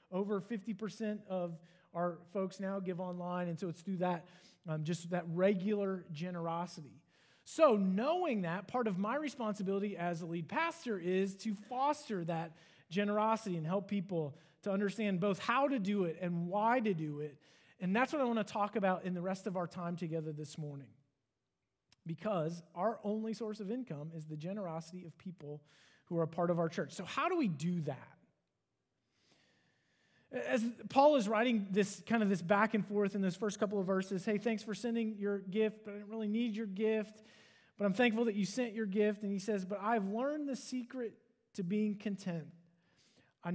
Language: English